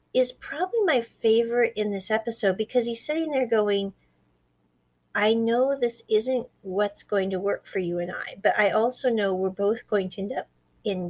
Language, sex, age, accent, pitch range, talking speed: English, female, 40-59, American, 200-265 Hz, 190 wpm